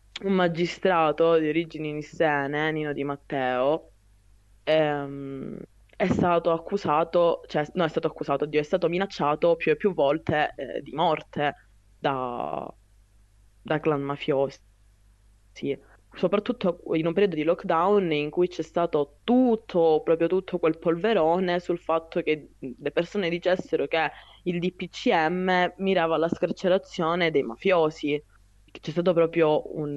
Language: Italian